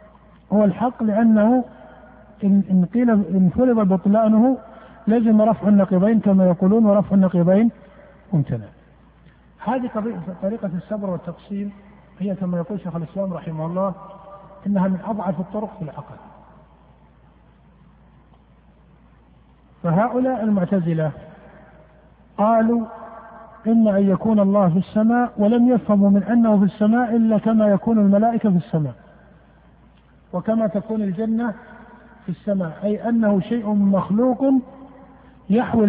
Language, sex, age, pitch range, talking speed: Arabic, male, 50-69, 190-225 Hz, 110 wpm